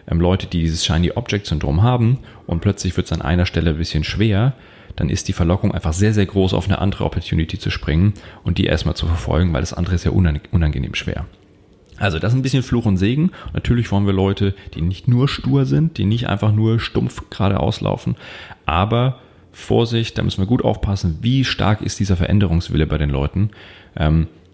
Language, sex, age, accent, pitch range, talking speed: German, male, 30-49, German, 85-110 Hz, 200 wpm